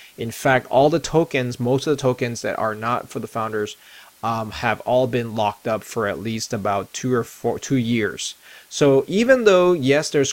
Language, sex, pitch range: English, male, 110-130 Hz